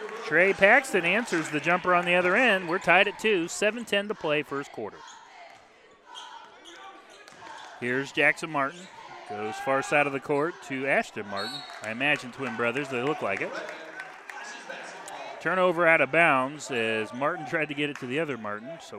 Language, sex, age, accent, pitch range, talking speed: English, male, 30-49, American, 135-205 Hz, 170 wpm